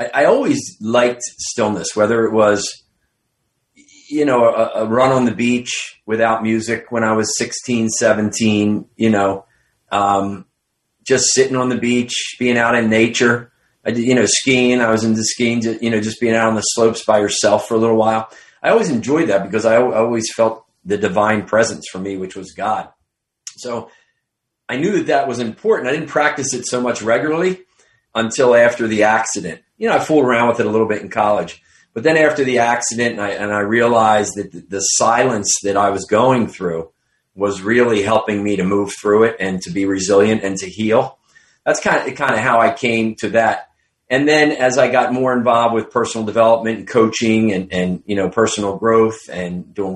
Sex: male